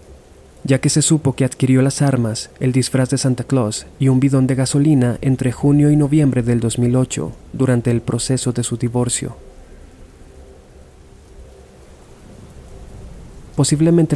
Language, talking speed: Spanish, 130 wpm